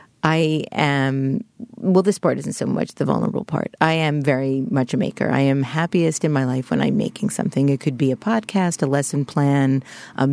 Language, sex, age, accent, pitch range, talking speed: English, female, 40-59, American, 140-170 Hz, 210 wpm